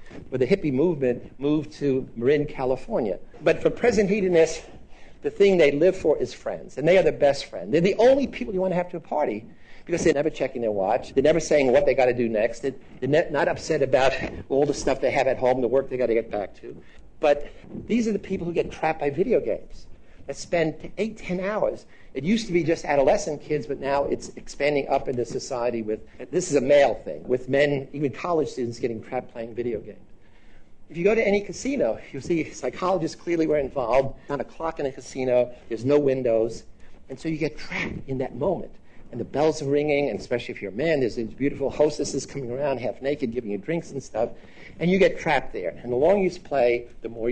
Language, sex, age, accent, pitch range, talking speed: English, male, 50-69, American, 125-170 Hz, 230 wpm